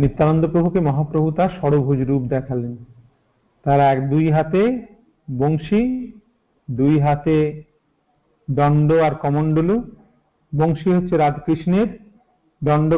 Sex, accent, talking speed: male, native, 85 wpm